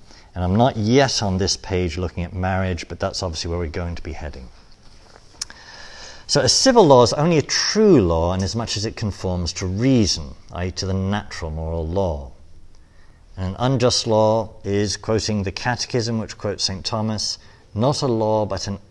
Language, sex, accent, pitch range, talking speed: English, male, British, 90-115 Hz, 185 wpm